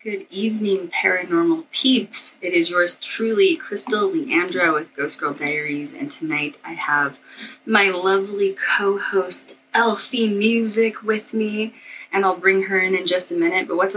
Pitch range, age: 170-240 Hz, 20-39